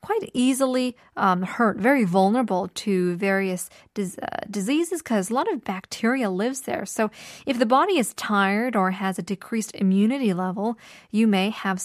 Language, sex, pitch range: Korean, female, 195-250 Hz